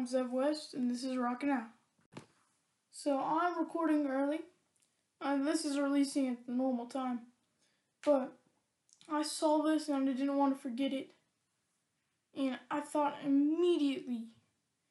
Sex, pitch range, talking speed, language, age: female, 250-300 Hz, 140 wpm, English, 10-29